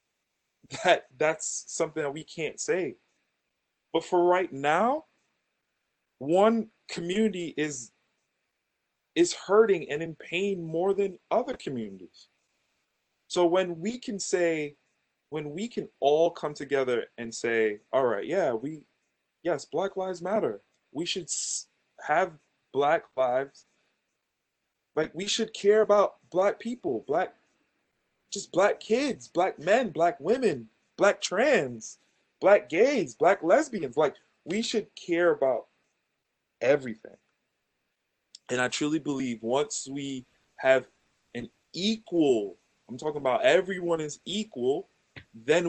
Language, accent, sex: English, American, male